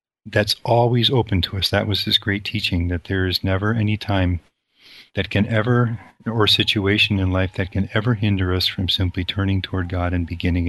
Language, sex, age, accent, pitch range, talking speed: English, male, 40-59, American, 90-105 Hz, 195 wpm